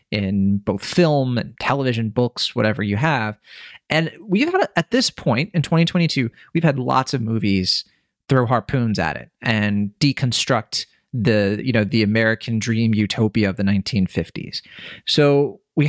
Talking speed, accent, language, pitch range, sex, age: 155 wpm, American, English, 105-135 Hz, male, 30-49